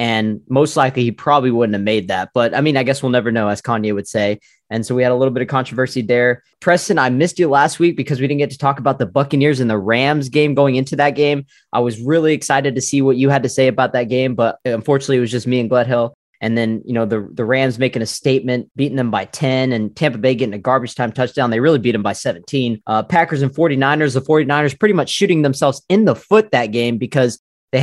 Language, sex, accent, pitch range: English, male, American, 120-145 Hz